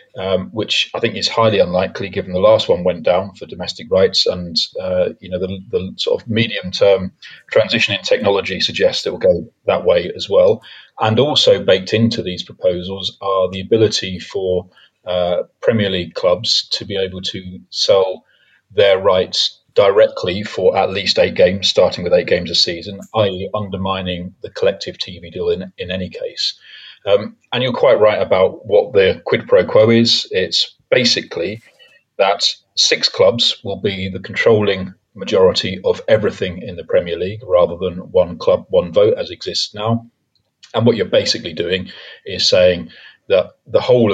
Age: 30-49